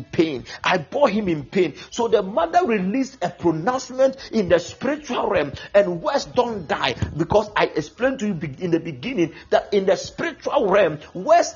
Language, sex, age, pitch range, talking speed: English, male, 50-69, 185-275 Hz, 175 wpm